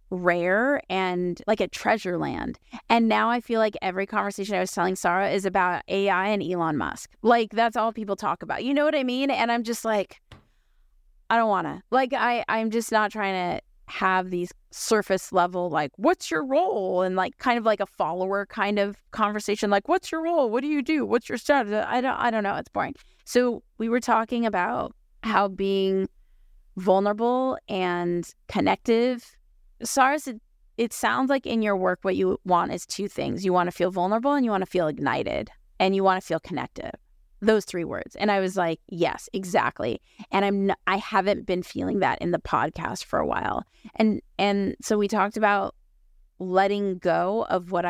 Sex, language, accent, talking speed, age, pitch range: female, English, American, 200 wpm, 20-39, 185-230 Hz